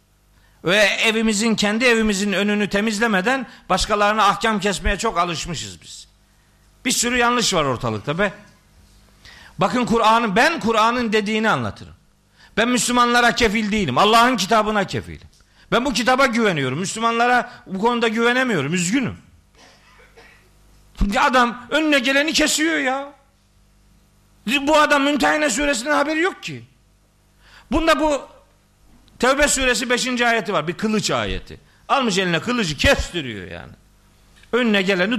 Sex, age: male, 50-69